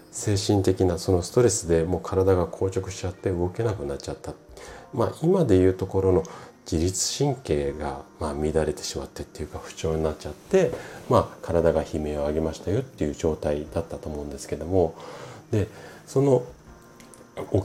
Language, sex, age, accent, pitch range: Japanese, male, 40-59, native, 80-110 Hz